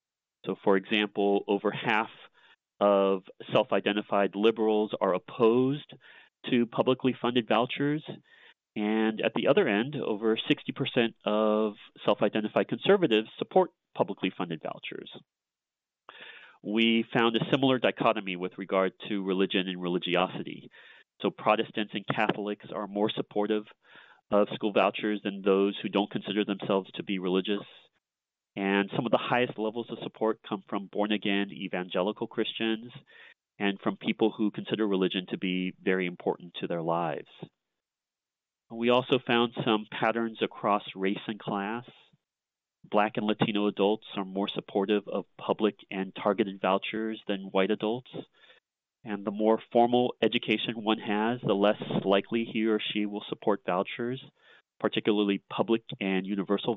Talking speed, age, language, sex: 135 wpm, 40-59, English, male